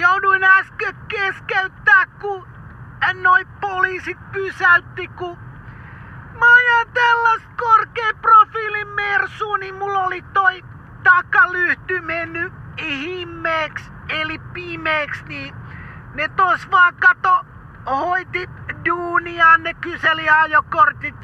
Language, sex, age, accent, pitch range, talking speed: Finnish, male, 40-59, native, 330-395 Hz, 90 wpm